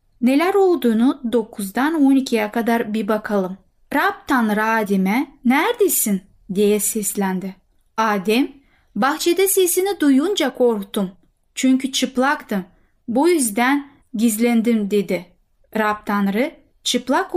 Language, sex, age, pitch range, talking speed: Turkish, female, 10-29, 210-285 Hz, 95 wpm